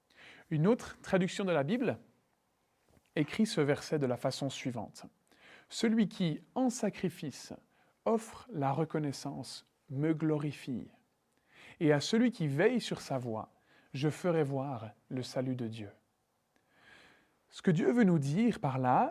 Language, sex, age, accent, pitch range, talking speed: French, male, 40-59, French, 140-195 Hz, 150 wpm